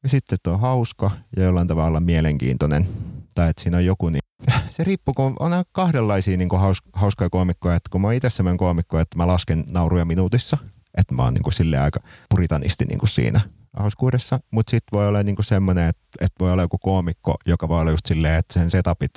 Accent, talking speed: native, 205 wpm